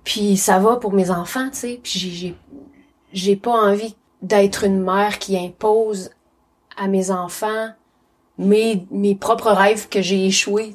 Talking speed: 155 wpm